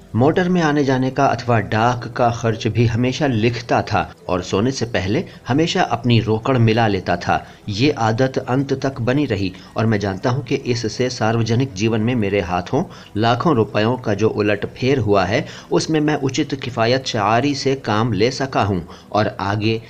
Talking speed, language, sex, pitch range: 180 wpm, Hindi, male, 105-135 Hz